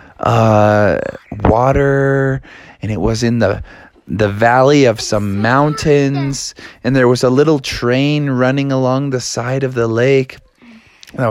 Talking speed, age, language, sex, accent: 140 wpm, 20-39, English, male, American